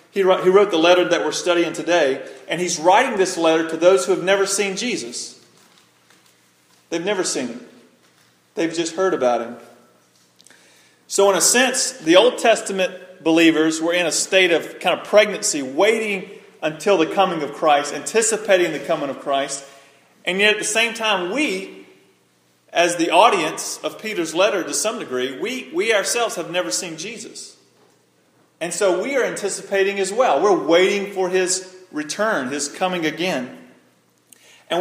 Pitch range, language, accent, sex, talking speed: 150-195 Hz, English, American, male, 165 wpm